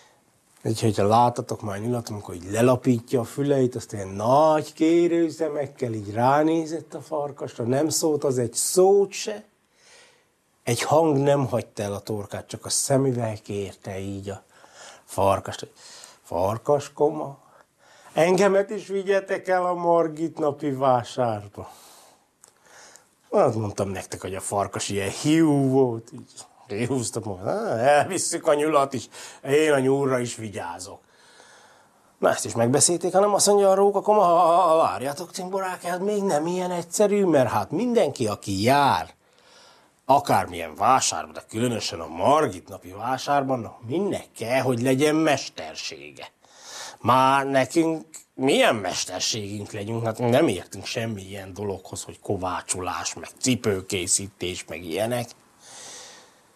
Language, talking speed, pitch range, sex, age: Hungarian, 125 wpm, 110-160 Hz, male, 60-79